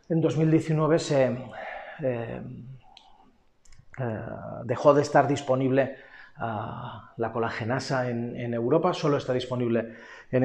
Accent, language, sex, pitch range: Spanish, Spanish, male, 125-145 Hz